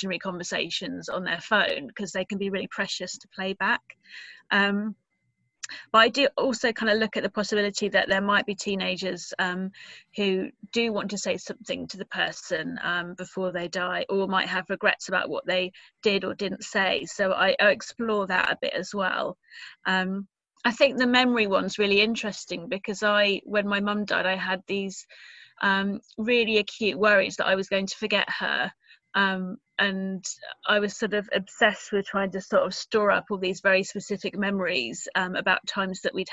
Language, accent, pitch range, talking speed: English, British, 190-210 Hz, 190 wpm